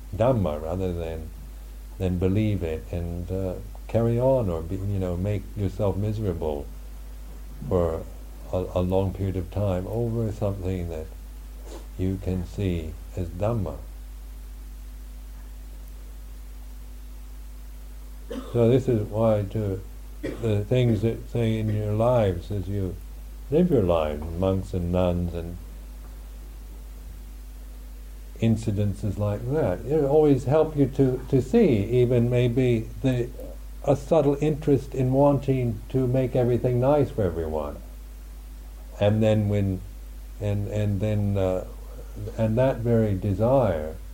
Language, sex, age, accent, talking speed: English, male, 60-79, American, 120 wpm